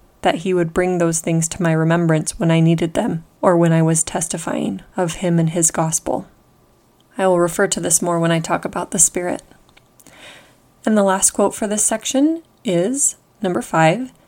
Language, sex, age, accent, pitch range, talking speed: English, female, 20-39, American, 170-205 Hz, 190 wpm